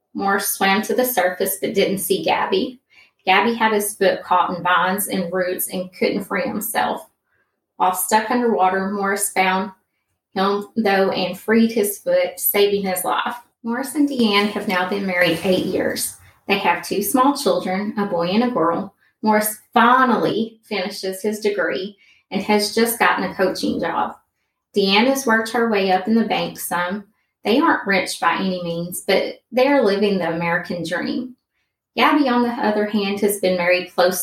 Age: 20-39